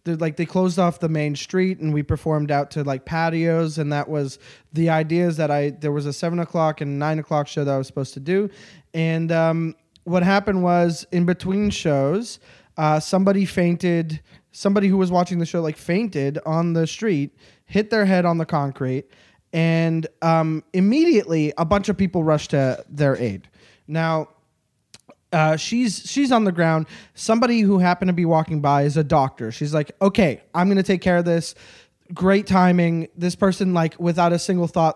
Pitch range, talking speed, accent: 150-180 Hz, 190 wpm, American